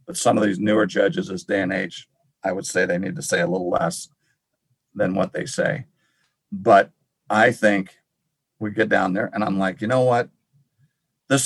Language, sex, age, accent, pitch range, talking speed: English, male, 50-69, American, 100-140 Hz, 195 wpm